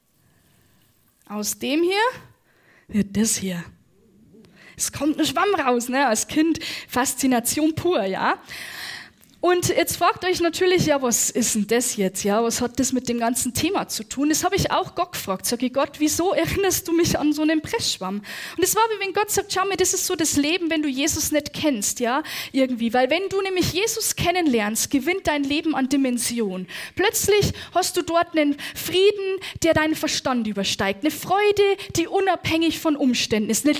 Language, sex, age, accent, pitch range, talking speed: German, female, 10-29, German, 250-360 Hz, 185 wpm